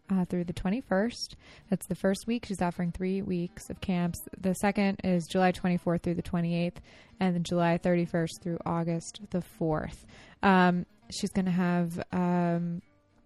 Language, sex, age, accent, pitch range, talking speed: English, female, 20-39, American, 175-205 Hz, 165 wpm